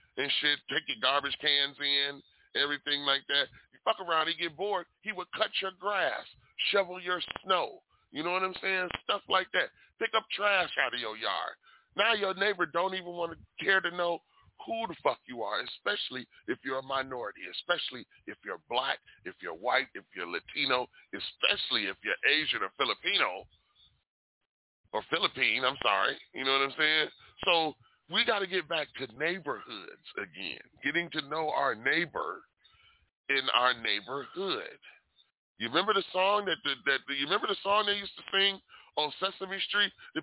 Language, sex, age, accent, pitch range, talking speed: English, female, 30-49, American, 155-205 Hz, 180 wpm